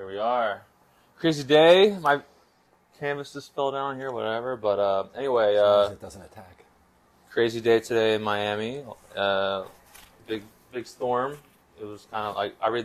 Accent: American